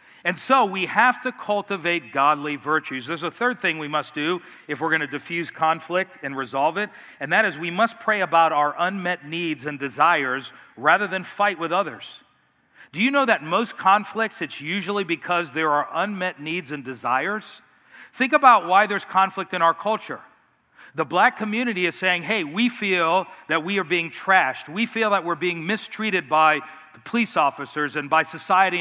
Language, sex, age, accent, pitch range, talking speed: English, male, 40-59, American, 155-205 Hz, 185 wpm